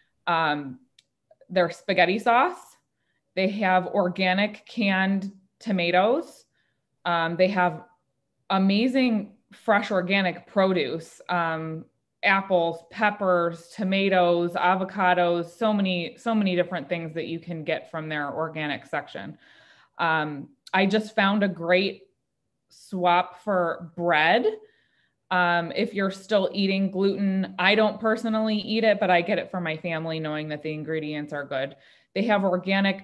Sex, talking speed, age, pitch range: female, 130 wpm, 20-39, 170-205 Hz